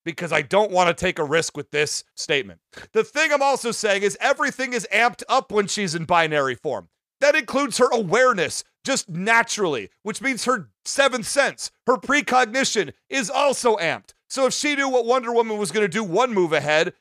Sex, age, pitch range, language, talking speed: male, 40-59, 195-255 Hz, English, 190 wpm